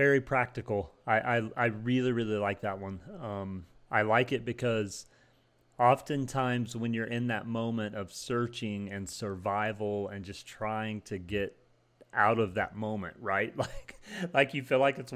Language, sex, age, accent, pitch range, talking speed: English, male, 30-49, American, 100-120 Hz, 160 wpm